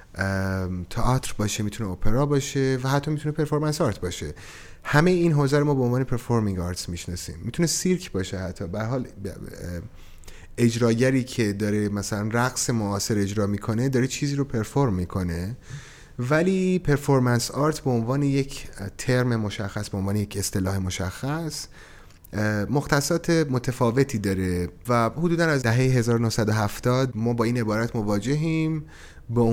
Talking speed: 135 wpm